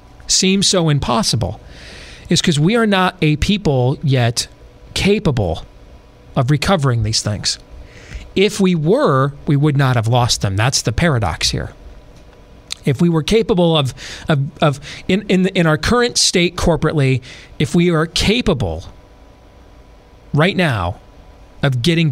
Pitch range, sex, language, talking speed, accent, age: 110-160 Hz, male, English, 140 wpm, American, 40-59